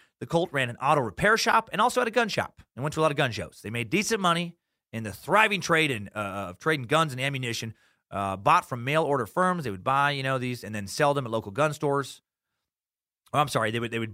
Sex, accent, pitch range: male, American, 110-155 Hz